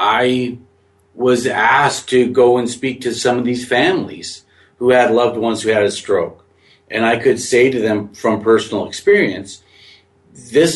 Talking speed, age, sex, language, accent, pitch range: 165 wpm, 50-69, male, English, American, 100-125 Hz